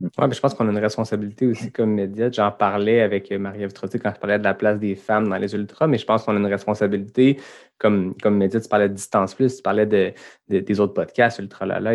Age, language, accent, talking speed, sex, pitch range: 20-39, French, Canadian, 255 wpm, male, 105-125 Hz